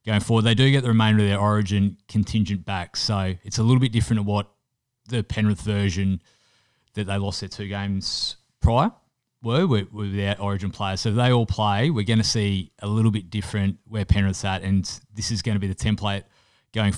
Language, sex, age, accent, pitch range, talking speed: English, male, 20-39, Australian, 100-115 Hz, 215 wpm